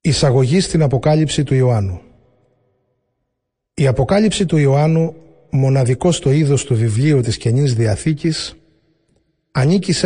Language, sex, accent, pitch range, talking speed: Greek, male, native, 120-150 Hz, 115 wpm